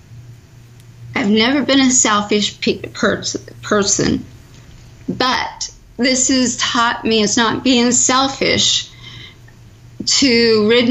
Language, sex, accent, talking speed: English, female, American, 105 wpm